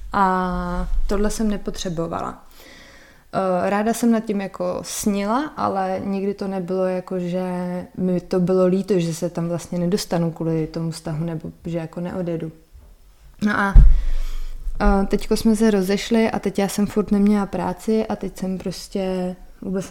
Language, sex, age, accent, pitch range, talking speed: Czech, female, 20-39, native, 185-215 Hz, 150 wpm